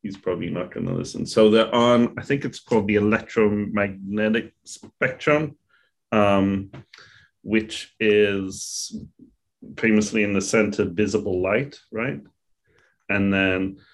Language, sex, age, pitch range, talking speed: English, male, 30-49, 90-105 Hz, 120 wpm